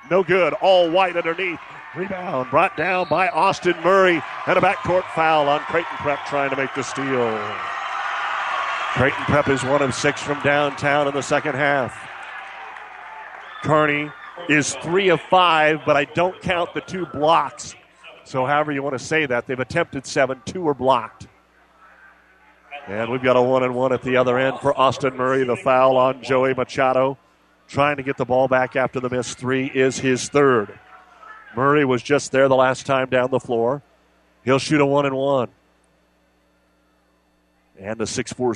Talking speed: 175 wpm